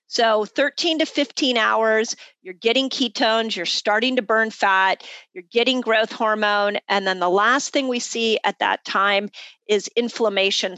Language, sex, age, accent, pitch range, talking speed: English, female, 40-59, American, 205-270 Hz, 160 wpm